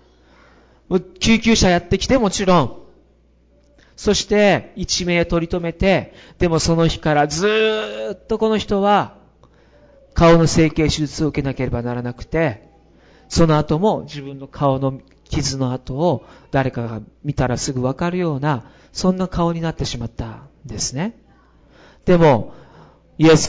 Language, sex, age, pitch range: Japanese, male, 40-59, 125-190 Hz